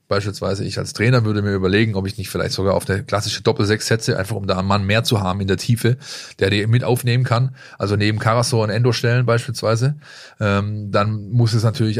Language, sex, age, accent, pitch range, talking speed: German, male, 20-39, German, 100-120 Hz, 230 wpm